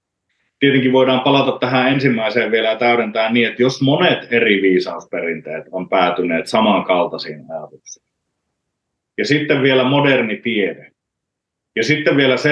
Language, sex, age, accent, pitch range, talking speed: Finnish, male, 30-49, native, 110-135 Hz, 130 wpm